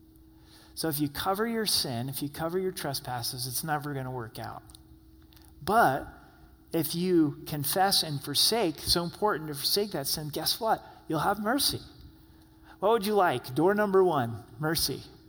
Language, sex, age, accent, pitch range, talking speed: English, male, 40-59, American, 145-190 Hz, 165 wpm